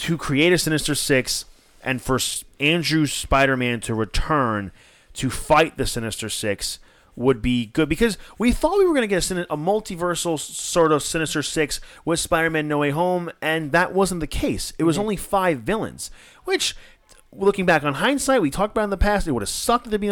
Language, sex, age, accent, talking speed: English, male, 30-49, American, 195 wpm